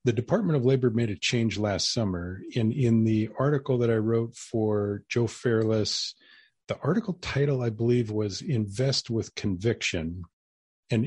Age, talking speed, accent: 40-59, 155 wpm, American